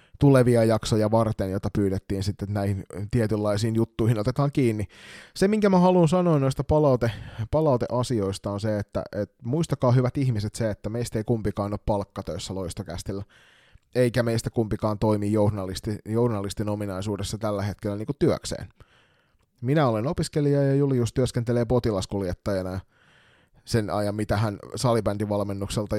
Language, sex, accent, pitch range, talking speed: Finnish, male, native, 100-125 Hz, 135 wpm